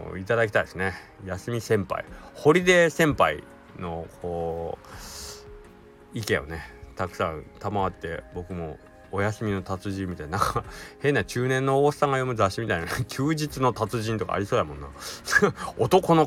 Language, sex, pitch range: Japanese, male, 95-135 Hz